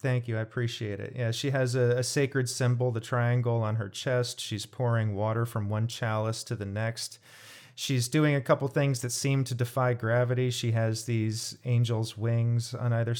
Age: 30-49